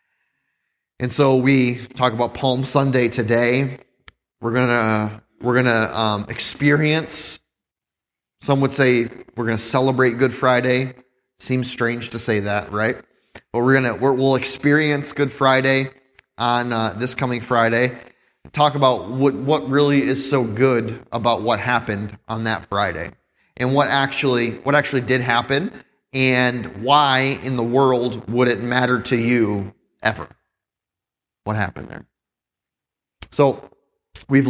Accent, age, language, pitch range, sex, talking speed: American, 30-49, English, 115-135 Hz, male, 135 wpm